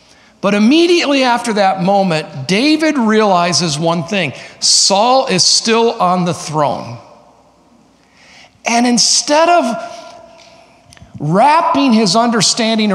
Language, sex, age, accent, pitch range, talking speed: English, male, 50-69, American, 180-255 Hz, 95 wpm